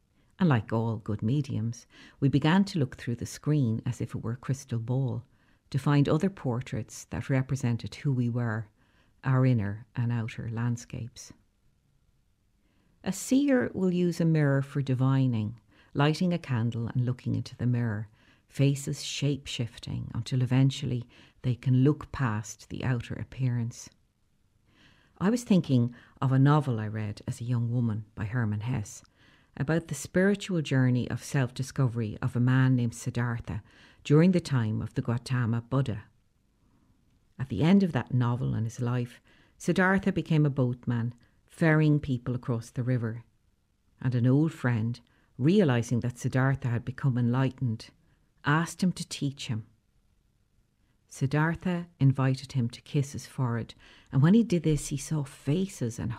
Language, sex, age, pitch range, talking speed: English, female, 60-79, 115-140 Hz, 150 wpm